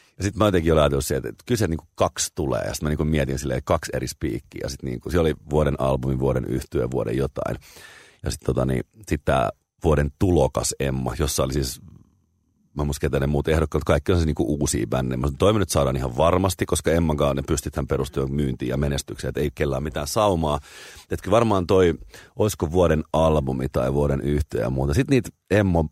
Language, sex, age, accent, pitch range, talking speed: Finnish, male, 30-49, native, 70-95 Hz, 200 wpm